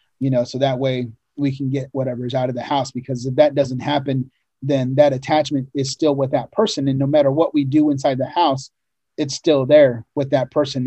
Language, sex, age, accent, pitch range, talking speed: English, male, 30-49, American, 130-145 Hz, 230 wpm